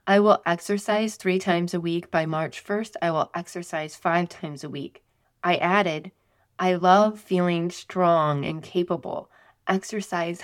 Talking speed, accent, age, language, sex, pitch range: 150 wpm, American, 20-39, English, female, 165-200 Hz